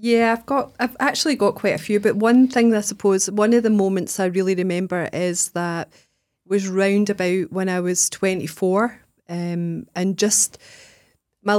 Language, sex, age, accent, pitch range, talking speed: English, female, 30-49, British, 180-210 Hz, 175 wpm